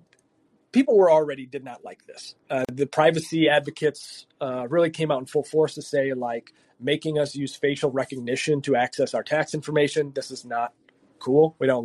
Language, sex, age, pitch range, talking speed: English, male, 30-49, 135-160 Hz, 185 wpm